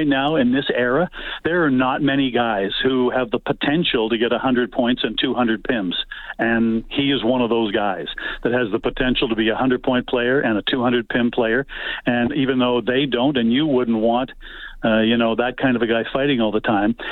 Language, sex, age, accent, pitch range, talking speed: English, male, 50-69, American, 120-140 Hz, 215 wpm